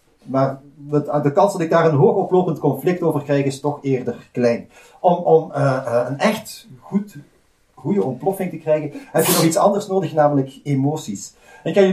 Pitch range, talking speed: 135-180 Hz, 180 wpm